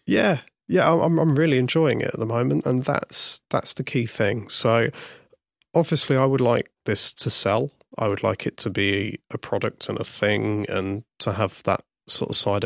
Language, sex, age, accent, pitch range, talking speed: English, male, 30-49, British, 105-125 Hz, 200 wpm